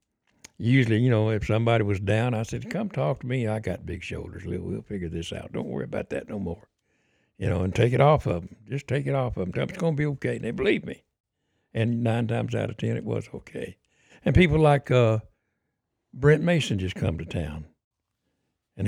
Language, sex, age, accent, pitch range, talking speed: English, male, 60-79, American, 100-125 Hz, 225 wpm